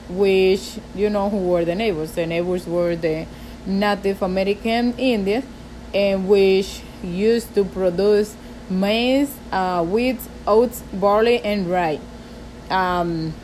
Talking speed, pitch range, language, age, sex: 115 wpm, 185-215 Hz, English, 30-49, female